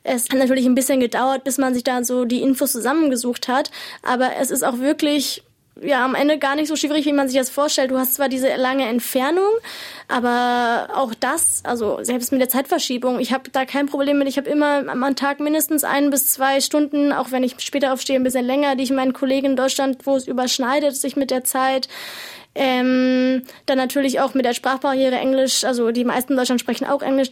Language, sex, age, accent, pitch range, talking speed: German, female, 10-29, German, 255-285 Hz, 215 wpm